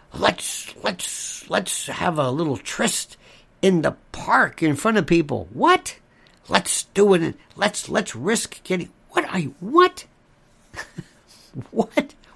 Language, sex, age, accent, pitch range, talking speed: English, male, 60-79, American, 150-205 Hz, 135 wpm